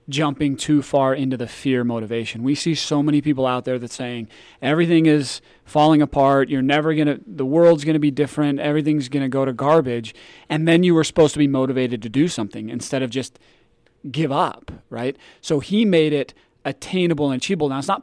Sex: male